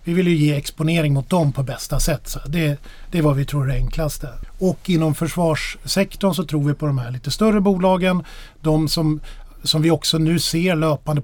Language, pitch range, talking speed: Swedish, 140-165 Hz, 210 wpm